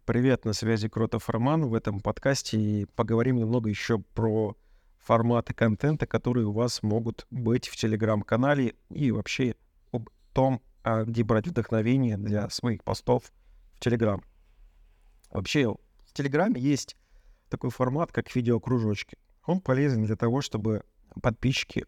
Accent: native